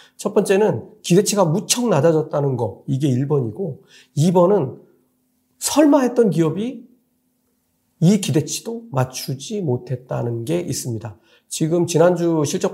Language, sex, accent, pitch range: Korean, male, native, 130-185 Hz